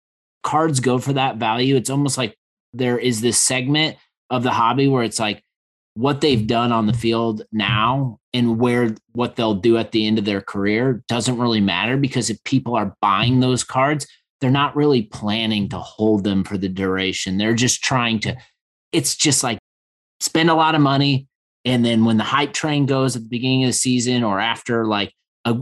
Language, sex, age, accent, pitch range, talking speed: English, male, 30-49, American, 110-130 Hz, 200 wpm